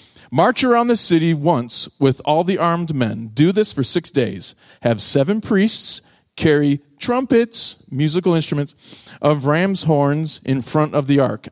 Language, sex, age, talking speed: English, male, 40-59, 155 wpm